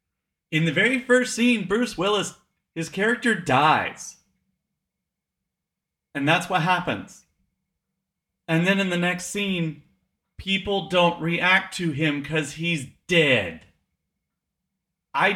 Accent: American